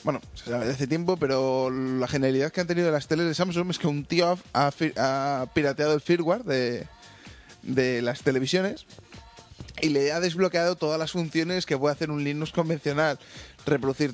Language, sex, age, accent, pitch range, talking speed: Spanish, male, 20-39, Spanish, 135-165 Hz, 175 wpm